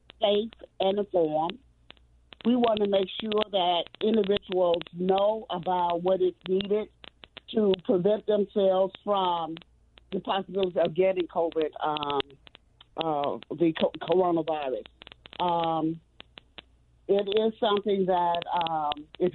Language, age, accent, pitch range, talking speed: English, 50-69, American, 170-200 Hz, 110 wpm